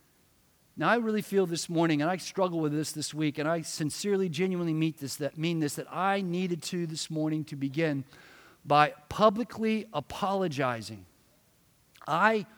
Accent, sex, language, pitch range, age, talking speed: American, male, English, 150-215 Hz, 50-69, 160 wpm